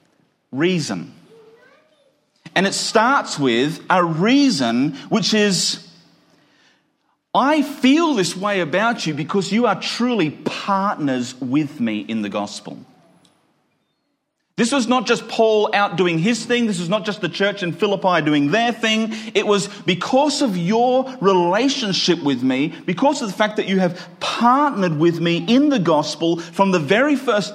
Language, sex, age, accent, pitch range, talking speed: English, male, 40-59, Australian, 145-220 Hz, 150 wpm